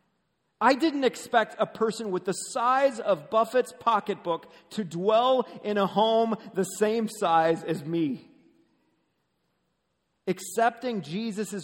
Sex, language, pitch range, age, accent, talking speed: male, English, 160-225 Hz, 40-59, American, 120 wpm